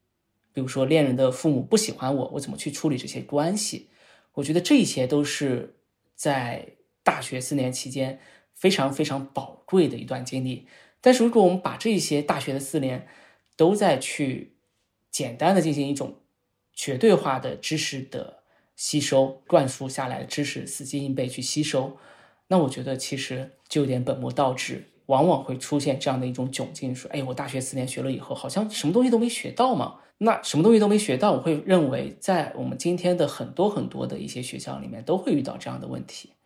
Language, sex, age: Chinese, male, 20-39